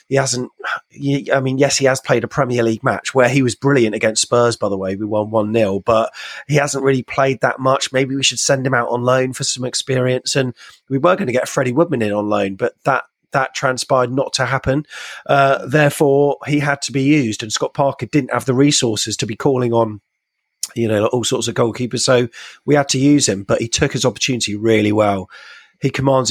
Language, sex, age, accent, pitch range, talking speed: English, male, 30-49, British, 115-140 Hz, 225 wpm